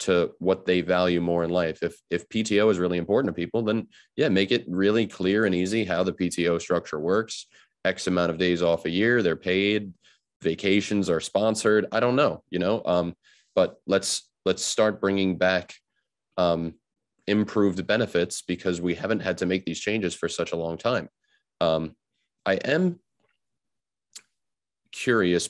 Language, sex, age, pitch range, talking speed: English, male, 30-49, 85-100 Hz, 170 wpm